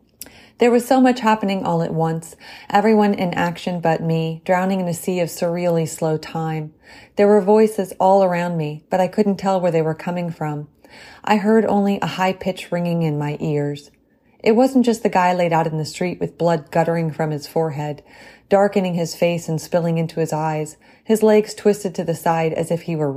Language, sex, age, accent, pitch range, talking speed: English, female, 30-49, American, 160-205 Hz, 205 wpm